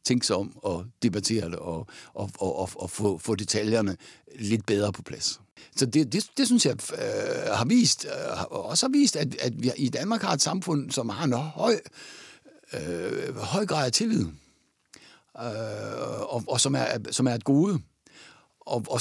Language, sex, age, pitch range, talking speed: Danish, male, 60-79, 120-185 Hz, 185 wpm